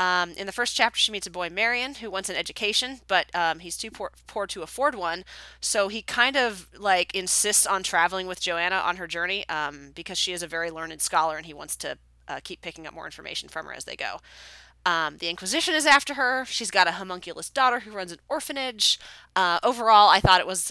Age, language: 20-39, English